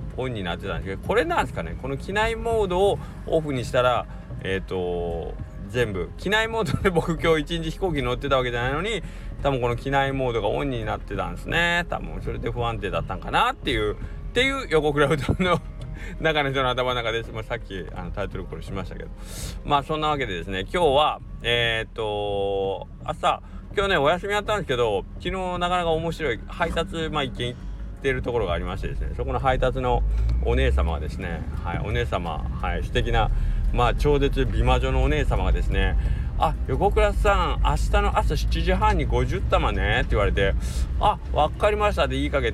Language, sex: Japanese, male